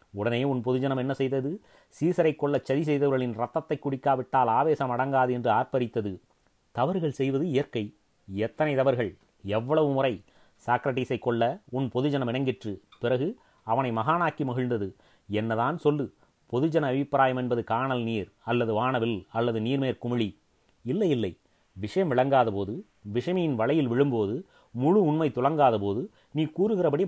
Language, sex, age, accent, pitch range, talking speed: Tamil, male, 30-49, native, 115-145 Hz, 120 wpm